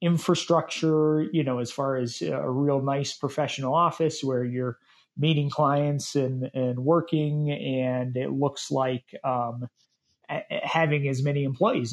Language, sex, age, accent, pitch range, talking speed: English, male, 30-49, American, 135-160 Hz, 140 wpm